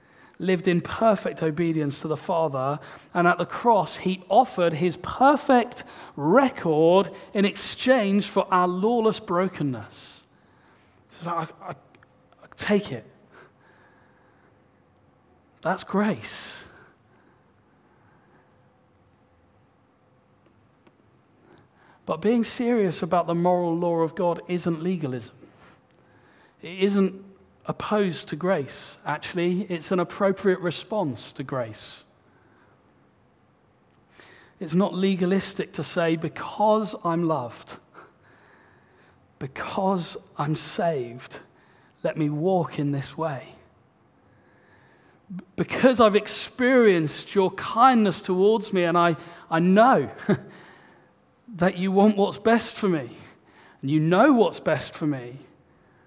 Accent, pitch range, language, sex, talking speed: British, 155-200 Hz, English, male, 100 wpm